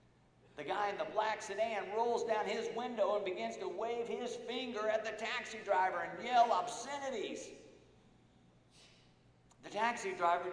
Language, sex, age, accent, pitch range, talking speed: English, male, 50-69, American, 145-225 Hz, 150 wpm